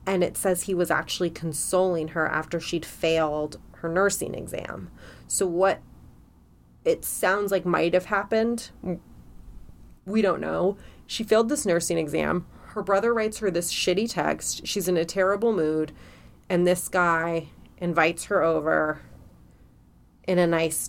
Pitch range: 155-185 Hz